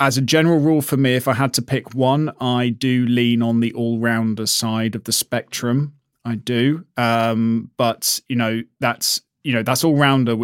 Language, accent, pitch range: English, British, 115-130 Hz